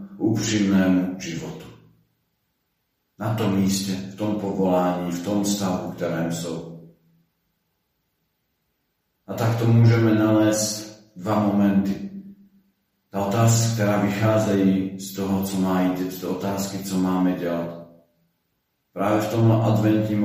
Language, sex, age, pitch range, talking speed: Slovak, male, 40-59, 90-110 Hz, 120 wpm